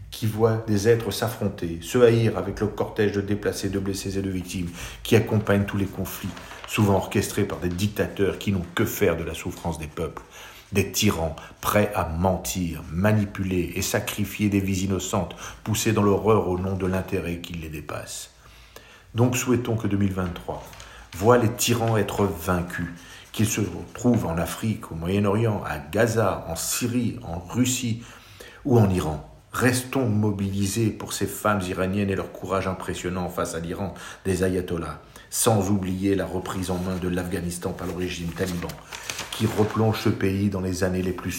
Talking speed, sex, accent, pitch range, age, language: 170 wpm, male, French, 90-110 Hz, 50-69, French